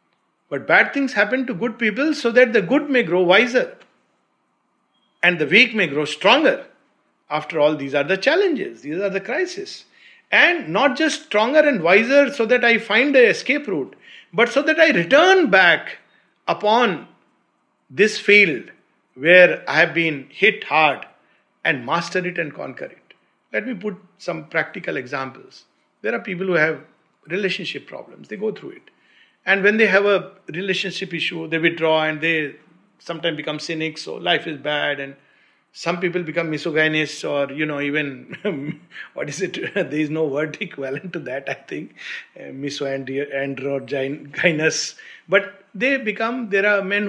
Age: 50-69